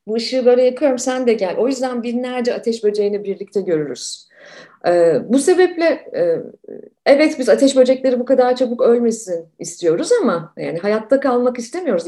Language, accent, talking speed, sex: Turkish, native, 160 wpm, female